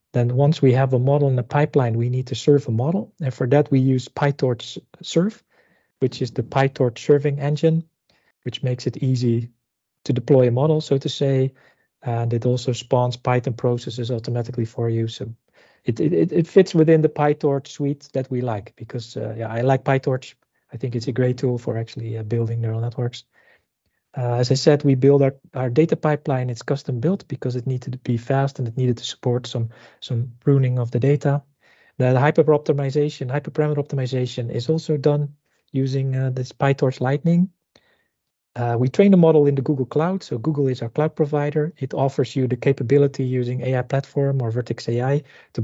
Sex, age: male, 40-59